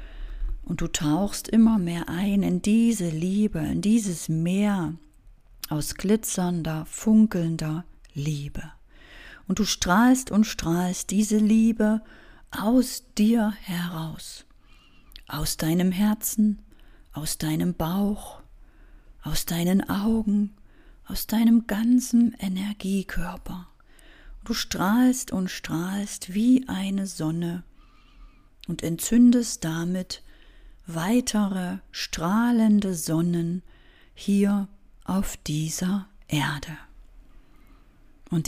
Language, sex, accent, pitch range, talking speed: German, female, German, 165-220 Hz, 90 wpm